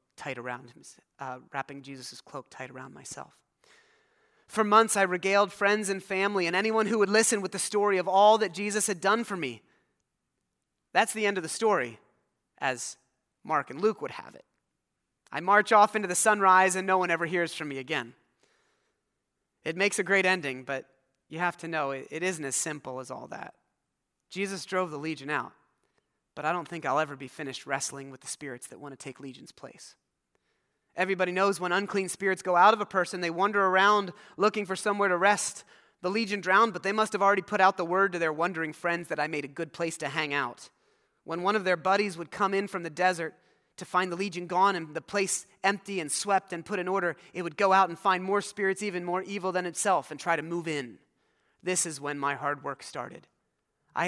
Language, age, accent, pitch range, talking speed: English, 30-49, American, 155-200 Hz, 215 wpm